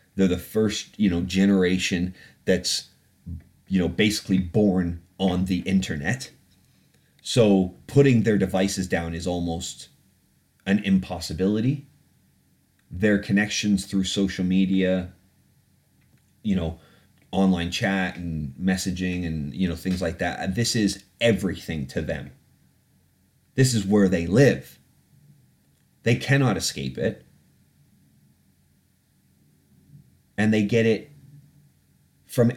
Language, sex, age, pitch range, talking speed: English, male, 30-49, 90-105 Hz, 110 wpm